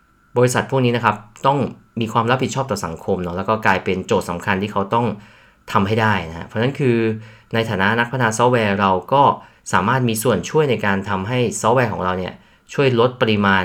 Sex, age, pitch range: male, 20-39, 95-115 Hz